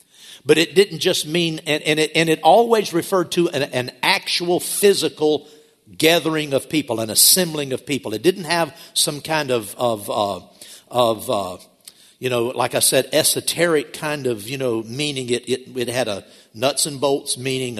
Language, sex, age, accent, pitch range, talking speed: English, male, 50-69, American, 130-175 Hz, 180 wpm